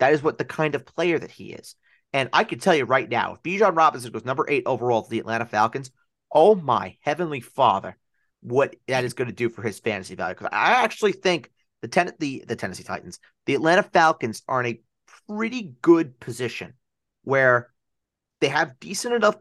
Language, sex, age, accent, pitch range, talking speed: English, male, 30-49, American, 125-175 Hz, 205 wpm